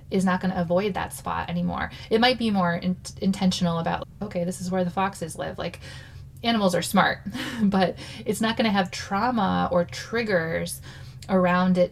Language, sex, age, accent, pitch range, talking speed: English, female, 20-39, American, 170-190 Hz, 185 wpm